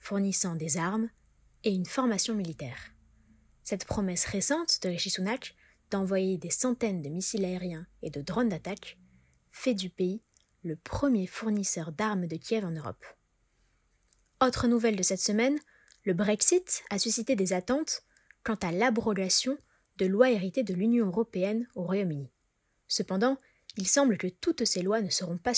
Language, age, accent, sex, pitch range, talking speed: French, 20-39, French, female, 180-225 Hz, 155 wpm